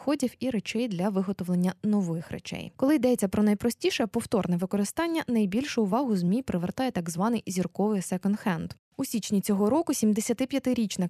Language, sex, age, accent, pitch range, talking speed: Ukrainian, female, 20-39, native, 185-240 Hz, 135 wpm